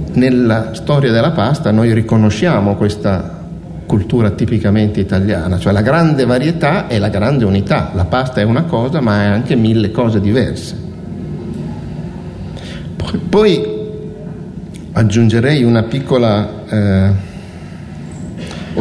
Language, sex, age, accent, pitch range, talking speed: Italian, male, 50-69, native, 95-120 Hz, 110 wpm